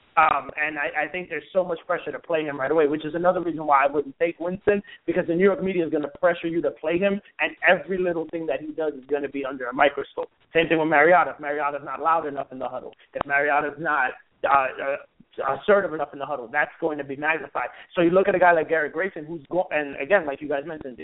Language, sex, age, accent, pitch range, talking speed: English, male, 30-49, American, 145-185 Hz, 275 wpm